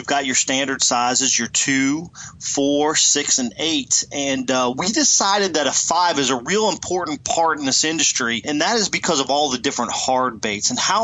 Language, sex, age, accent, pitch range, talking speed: English, male, 30-49, American, 130-165 Hz, 200 wpm